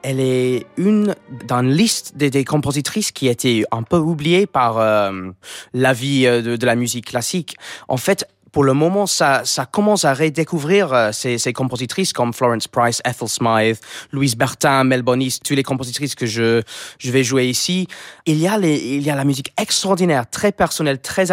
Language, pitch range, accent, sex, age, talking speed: French, 120-165 Hz, French, male, 20-39, 190 wpm